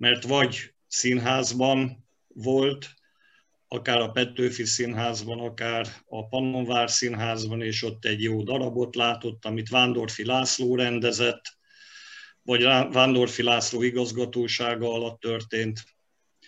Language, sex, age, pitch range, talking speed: Hungarian, male, 50-69, 115-130 Hz, 100 wpm